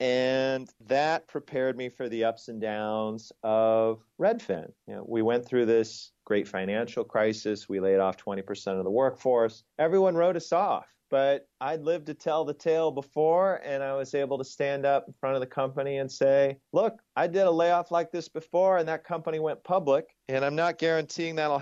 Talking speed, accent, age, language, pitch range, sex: 190 wpm, American, 30-49, English, 115-160 Hz, male